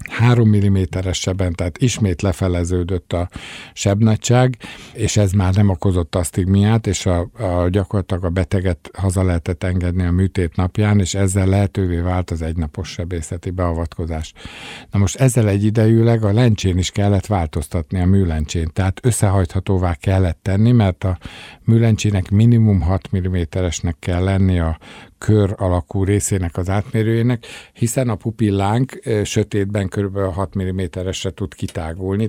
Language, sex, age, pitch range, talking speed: Hungarian, male, 50-69, 90-105 Hz, 130 wpm